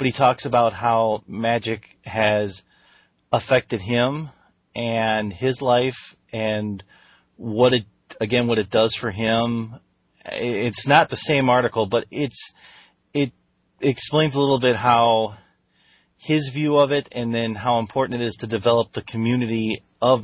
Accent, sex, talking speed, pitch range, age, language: American, male, 145 wpm, 110-125 Hz, 30-49, English